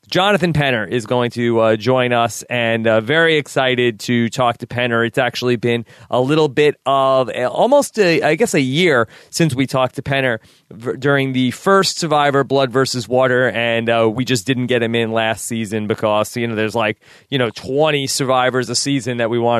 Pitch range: 120-140 Hz